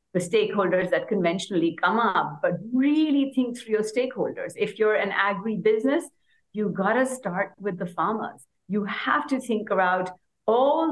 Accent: Indian